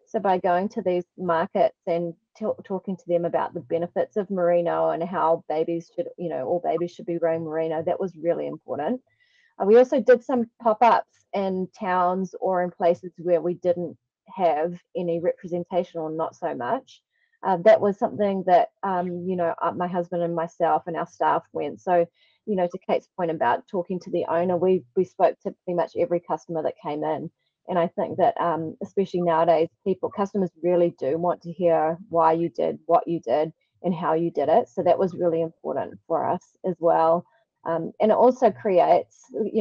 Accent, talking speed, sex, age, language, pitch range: Australian, 200 wpm, female, 20-39, English, 170-190 Hz